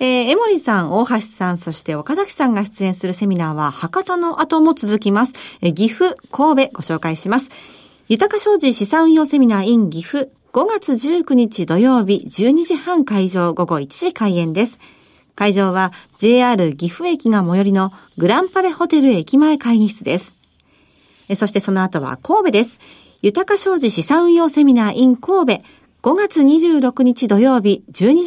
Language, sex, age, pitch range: Japanese, female, 40-59, 195-295 Hz